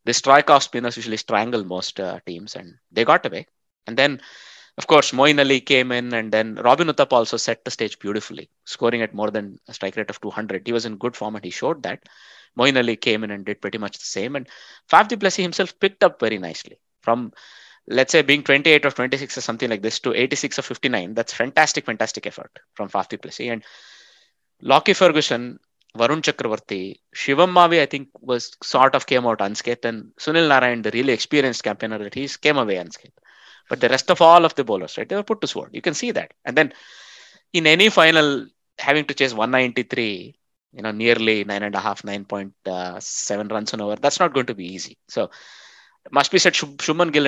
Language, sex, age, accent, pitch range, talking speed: English, male, 20-39, Indian, 110-145 Hz, 215 wpm